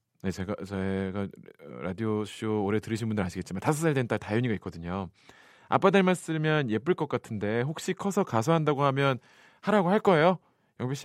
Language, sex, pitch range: Korean, male, 100-160 Hz